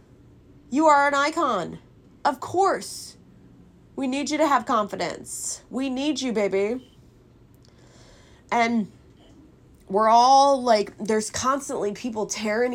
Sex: female